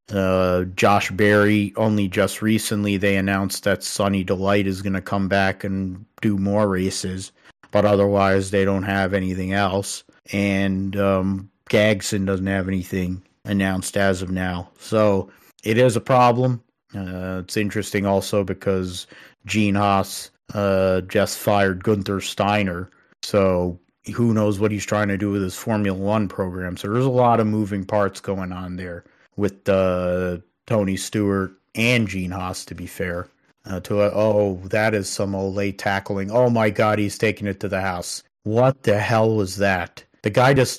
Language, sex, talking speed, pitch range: English, male, 170 wpm, 95-110 Hz